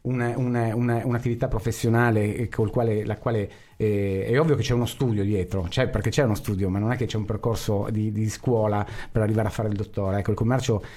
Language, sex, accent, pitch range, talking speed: Italian, male, native, 110-125 Hz, 225 wpm